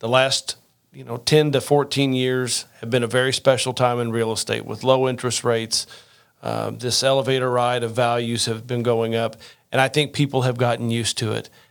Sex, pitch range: male, 120-145 Hz